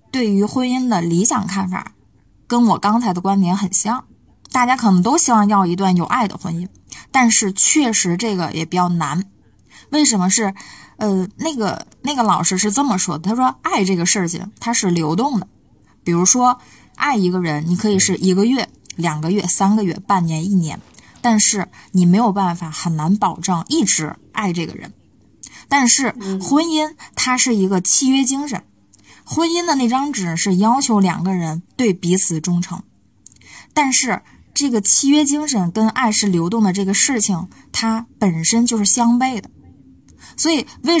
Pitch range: 185-245 Hz